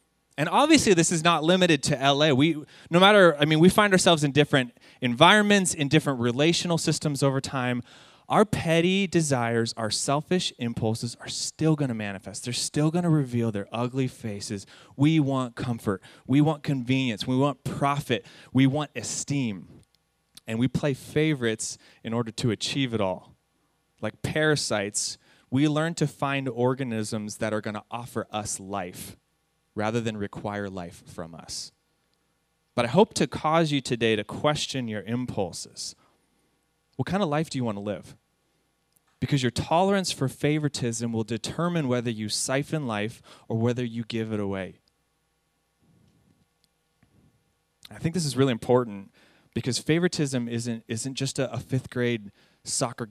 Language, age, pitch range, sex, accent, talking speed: English, 20-39, 115-155 Hz, male, American, 155 wpm